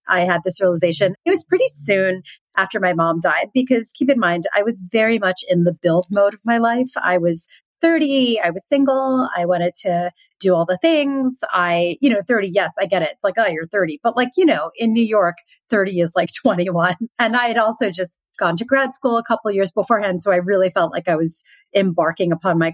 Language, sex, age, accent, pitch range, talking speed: English, female, 30-49, American, 175-235 Hz, 230 wpm